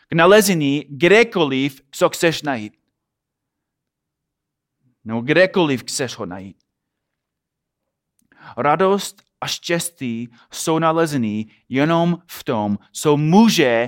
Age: 30-49